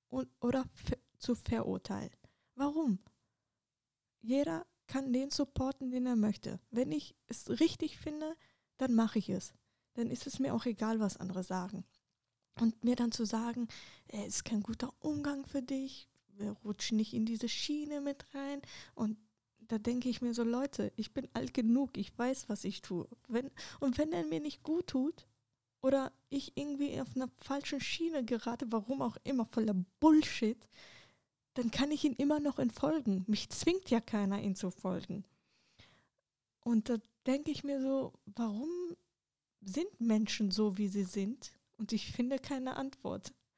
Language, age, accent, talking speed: German, 20-39, German, 160 wpm